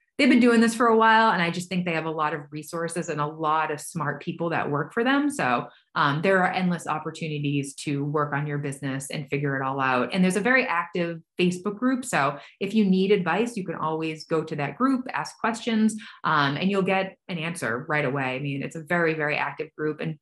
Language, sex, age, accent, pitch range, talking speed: English, female, 30-49, American, 155-210 Hz, 240 wpm